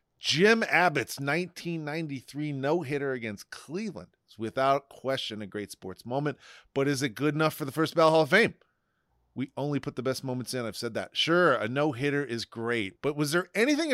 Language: English